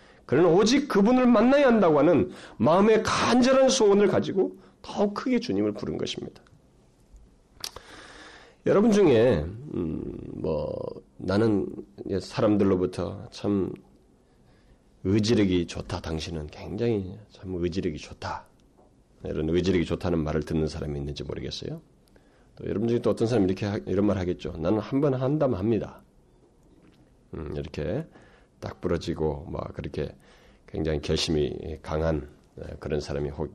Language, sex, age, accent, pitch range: Korean, male, 40-59, native, 75-115 Hz